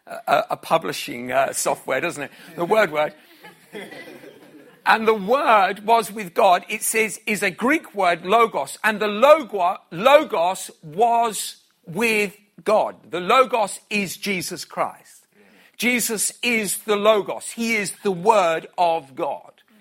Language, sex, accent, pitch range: English, male, British, 180-230 Hz